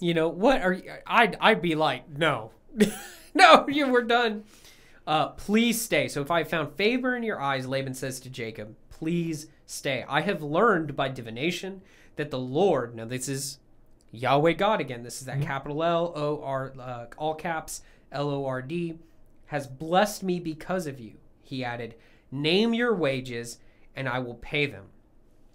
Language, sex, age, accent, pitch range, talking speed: English, male, 30-49, American, 130-195 Hz, 165 wpm